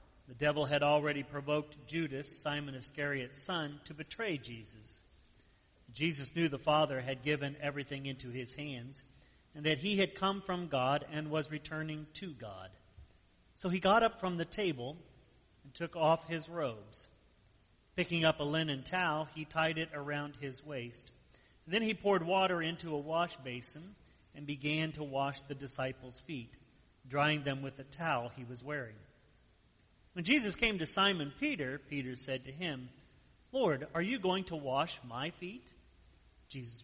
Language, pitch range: English, 130-170 Hz